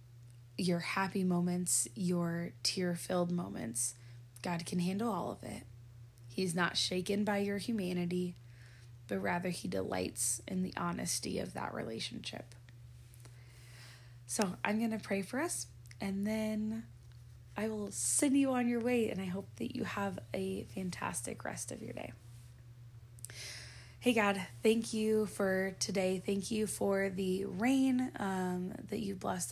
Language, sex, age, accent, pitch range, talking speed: English, female, 20-39, American, 120-195 Hz, 145 wpm